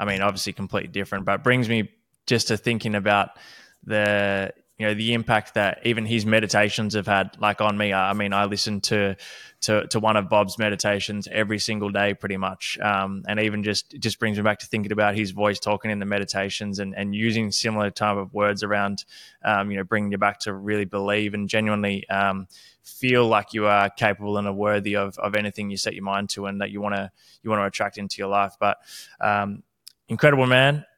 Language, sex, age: English, male, 20-39